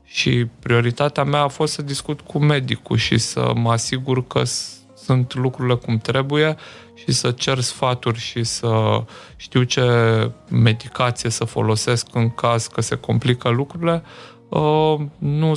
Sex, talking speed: male, 140 wpm